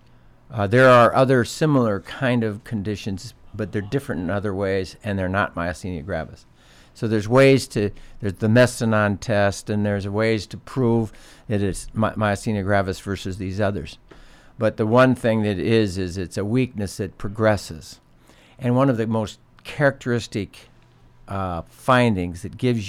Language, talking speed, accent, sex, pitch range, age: English, 160 wpm, American, male, 95-115 Hz, 60-79